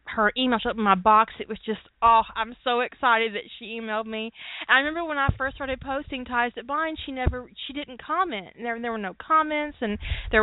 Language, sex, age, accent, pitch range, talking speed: English, female, 20-39, American, 195-260 Hz, 235 wpm